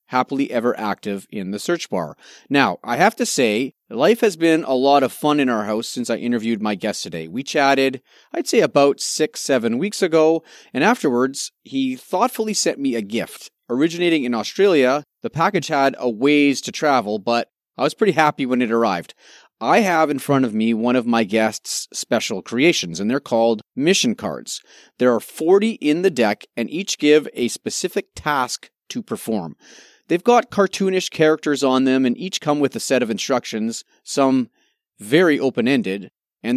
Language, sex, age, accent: English, male, 30-49, American